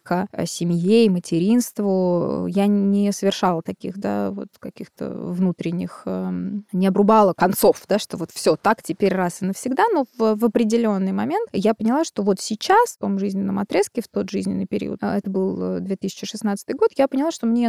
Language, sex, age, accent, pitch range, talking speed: Russian, female, 20-39, native, 185-225 Hz, 175 wpm